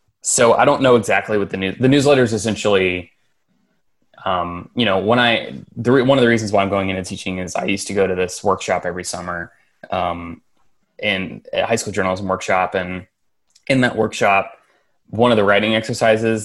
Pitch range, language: 90-105 Hz, English